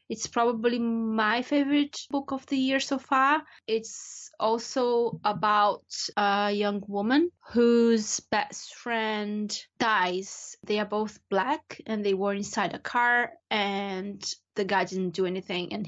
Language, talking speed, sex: English, 140 wpm, female